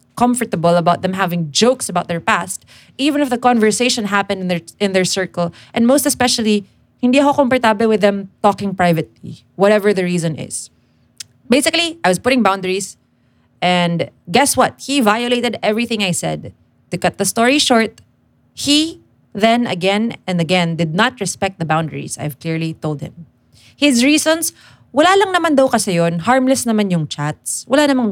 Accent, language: Filipino, English